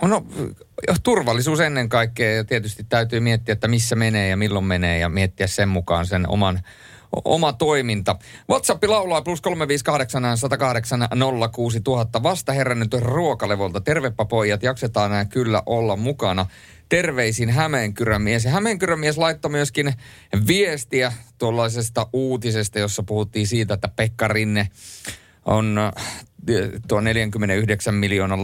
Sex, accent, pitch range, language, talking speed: male, native, 95-115 Hz, Finnish, 115 wpm